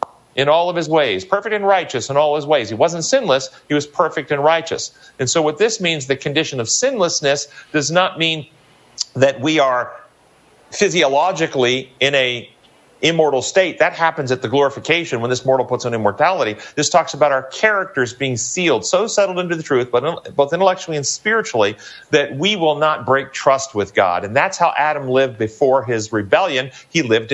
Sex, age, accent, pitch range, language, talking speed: male, 40-59, American, 125-155 Hz, English, 190 wpm